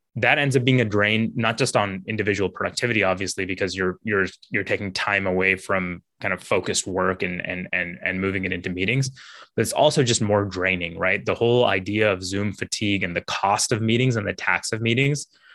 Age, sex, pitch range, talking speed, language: 20-39, male, 95-120 Hz, 210 wpm, English